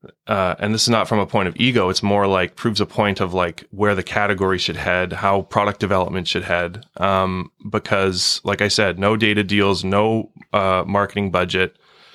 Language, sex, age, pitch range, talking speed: English, male, 20-39, 95-105 Hz, 200 wpm